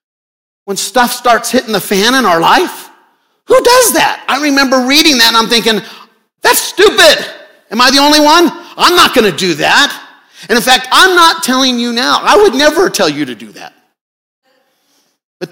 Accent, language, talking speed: American, English, 190 wpm